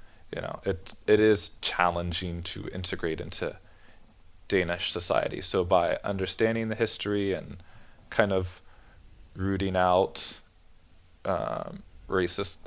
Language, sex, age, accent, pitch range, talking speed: Danish, male, 20-39, American, 90-100 Hz, 110 wpm